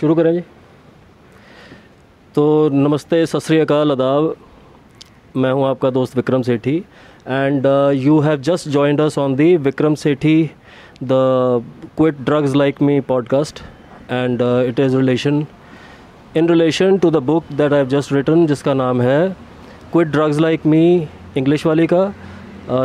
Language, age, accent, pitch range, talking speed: Hindi, 20-39, native, 130-165 Hz, 130 wpm